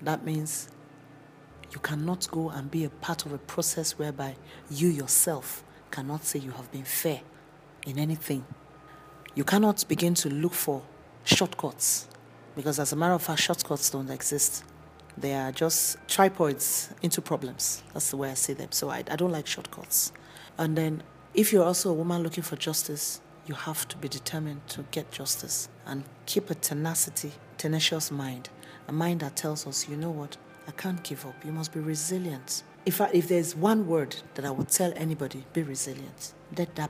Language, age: English, 40-59